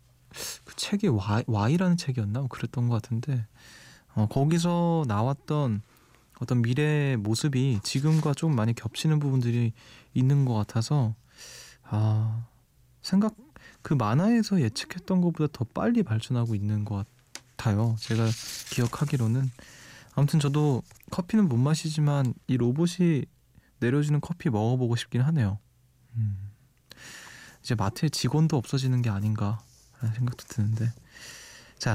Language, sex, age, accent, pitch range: Korean, male, 20-39, native, 115-145 Hz